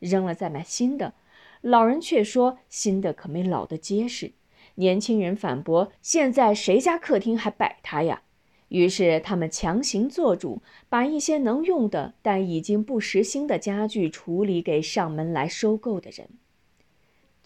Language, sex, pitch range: Chinese, female, 180-255 Hz